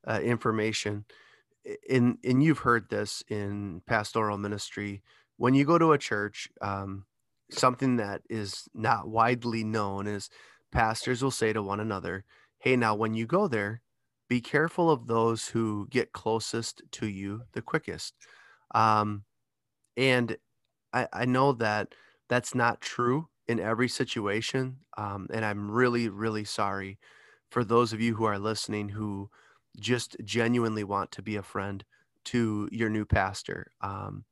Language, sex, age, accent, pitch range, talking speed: English, male, 20-39, American, 105-120 Hz, 150 wpm